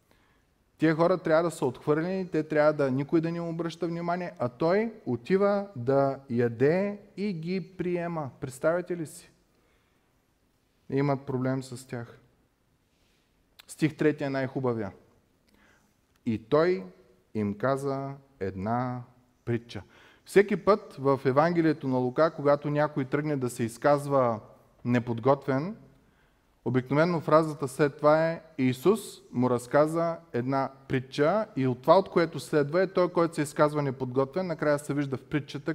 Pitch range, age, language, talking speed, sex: 130-165 Hz, 30-49, Bulgarian, 135 wpm, male